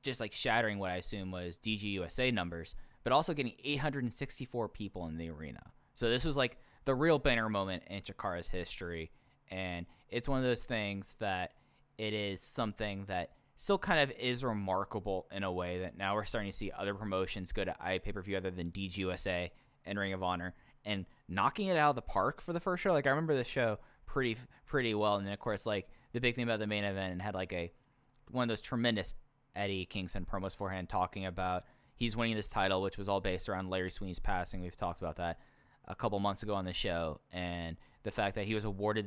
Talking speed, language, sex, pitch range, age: 215 wpm, English, male, 90-120 Hz, 10-29